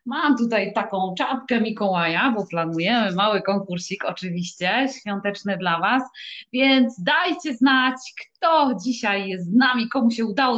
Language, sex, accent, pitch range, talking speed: Polish, female, native, 190-265 Hz, 135 wpm